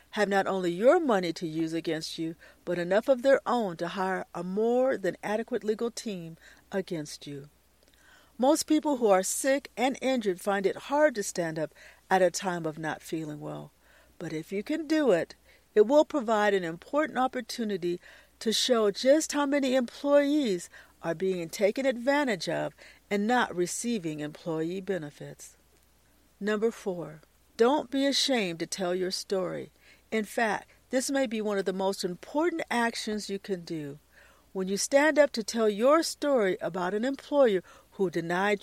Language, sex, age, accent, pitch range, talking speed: English, female, 50-69, American, 175-265 Hz, 170 wpm